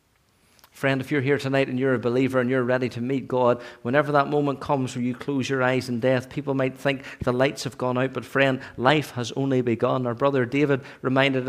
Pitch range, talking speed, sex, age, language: 115-135 Hz, 230 wpm, male, 50-69, English